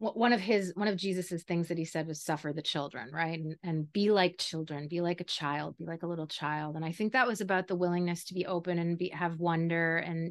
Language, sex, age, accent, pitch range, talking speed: English, female, 30-49, American, 180-235 Hz, 260 wpm